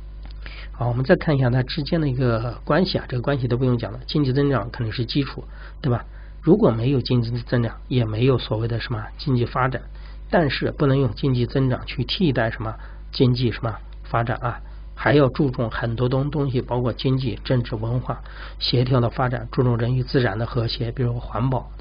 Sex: male